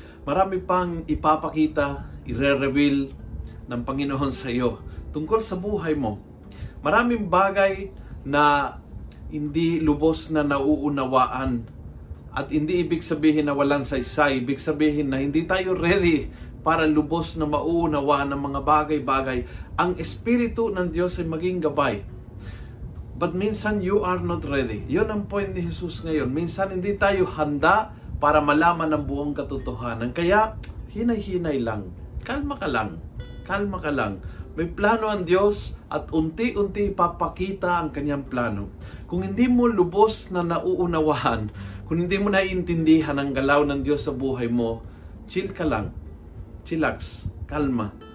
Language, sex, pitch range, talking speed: Filipino, male, 125-180 Hz, 135 wpm